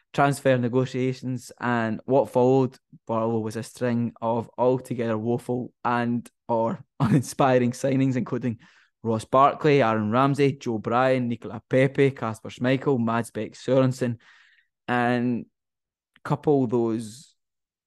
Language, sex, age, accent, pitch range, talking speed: English, male, 10-29, British, 115-130 Hz, 110 wpm